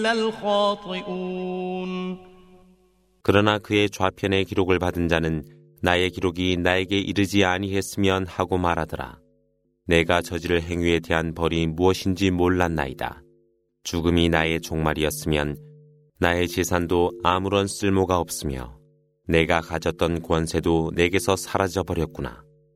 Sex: male